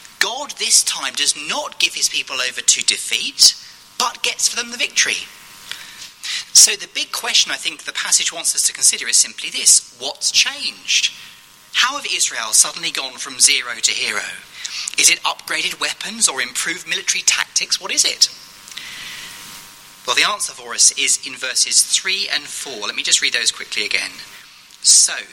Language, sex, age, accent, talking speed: English, male, 30-49, British, 175 wpm